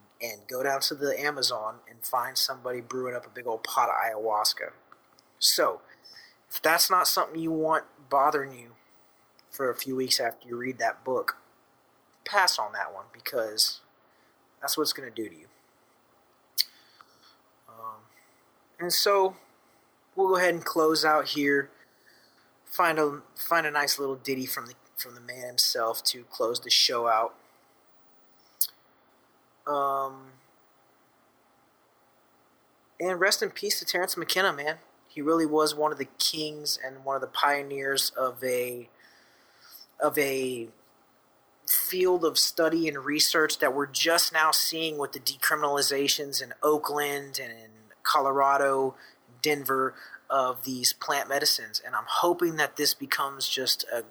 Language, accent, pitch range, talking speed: English, American, 130-155 Hz, 145 wpm